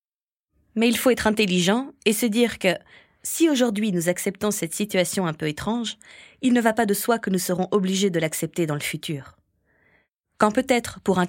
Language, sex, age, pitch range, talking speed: French, female, 20-39, 175-235 Hz, 195 wpm